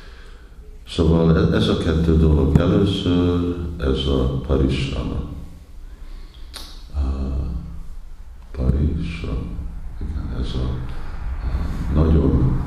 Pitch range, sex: 65-80 Hz, male